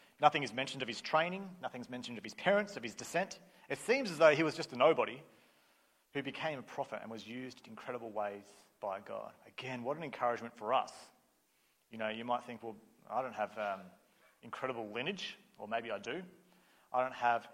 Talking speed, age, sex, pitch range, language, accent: 205 wpm, 40-59, male, 110-135 Hz, English, Australian